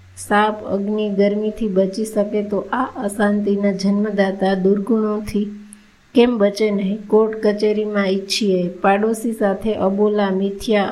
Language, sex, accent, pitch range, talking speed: Gujarati, female, native, 200-220 Hz, 120 wpm